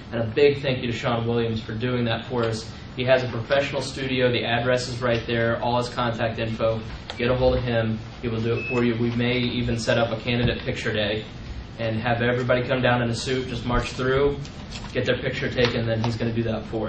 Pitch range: 115-130 Hz